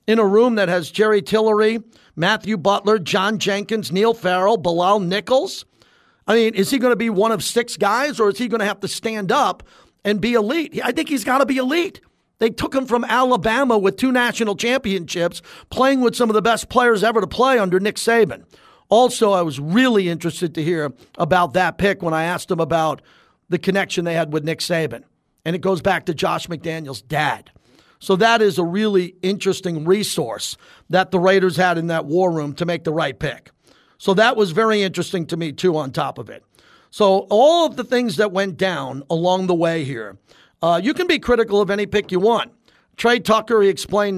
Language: English